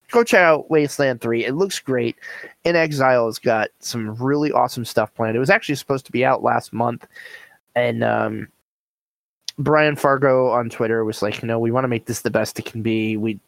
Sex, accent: male, American